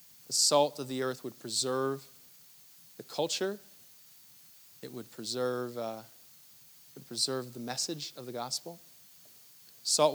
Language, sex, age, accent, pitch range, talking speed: English, male, 30-49, American, 125-155 Hz, 125 wpm